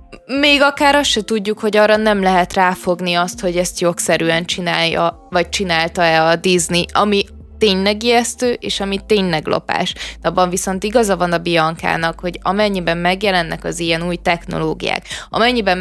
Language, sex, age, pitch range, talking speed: Hungarian, female, 20-39, 170-210 Hz, 150 wpm